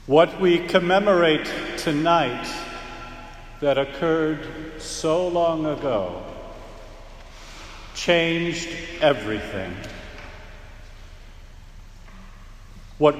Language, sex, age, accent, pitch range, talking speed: English, male, 50-69, American, 130-175 Hz, 55 wpm